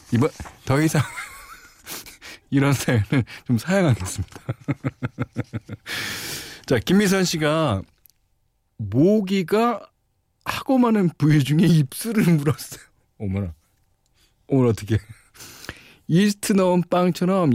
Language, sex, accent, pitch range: Korean, male, native, 105-175 Hz